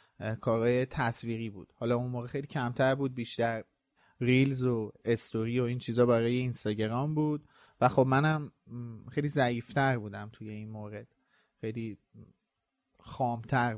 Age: 30-49